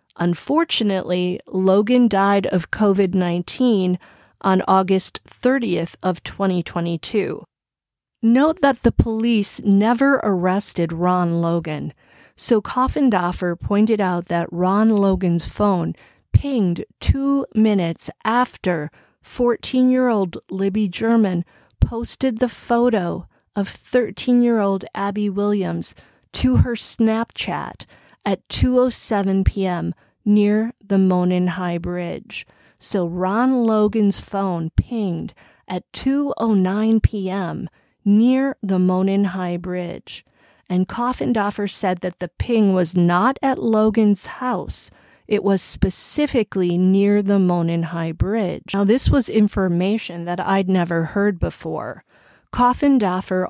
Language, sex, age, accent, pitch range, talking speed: English, female, 40-59, American, 180-225 Hz, 105 wpm